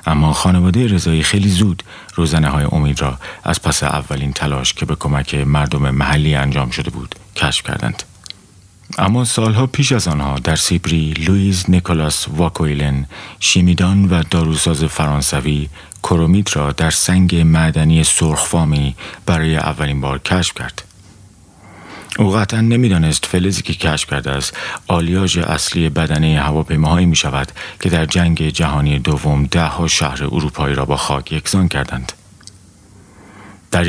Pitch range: 75-95 Hz